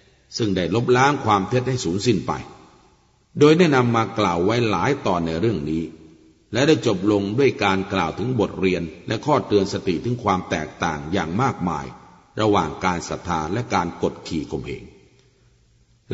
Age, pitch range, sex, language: 60-79, 90-120 Hz, male, Thai